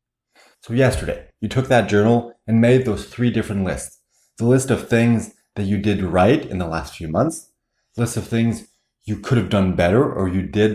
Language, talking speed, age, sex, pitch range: English, 205 wpm, 30-49, male, 100-130 Hz